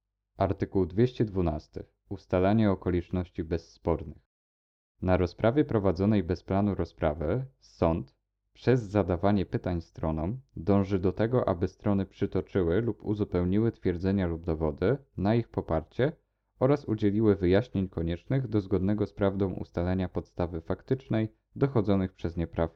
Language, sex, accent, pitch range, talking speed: Polish, male, native, 85-110 Hz, 120 wpm